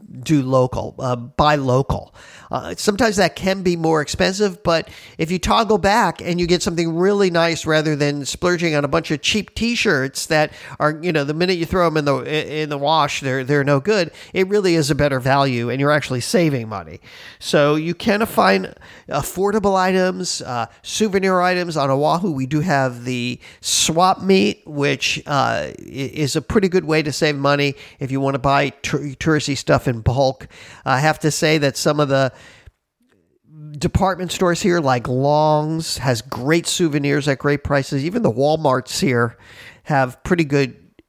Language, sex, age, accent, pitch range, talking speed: English, male, 50-69, American, 140-185 Hz, 180 wpm